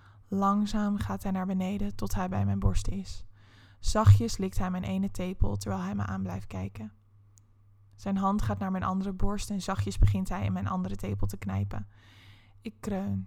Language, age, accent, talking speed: Dutch, 20-39, Dutch, 190 wpm